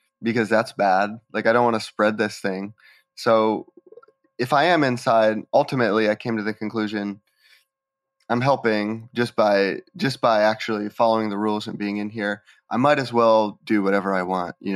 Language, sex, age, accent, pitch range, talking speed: English, male, 20-39, American, 110-165 Hz, 185 wpm